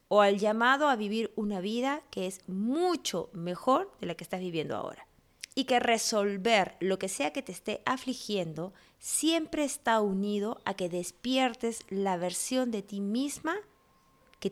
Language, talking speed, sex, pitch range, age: Spanish, 160 wpm, female, 180-235 Hz, 20-39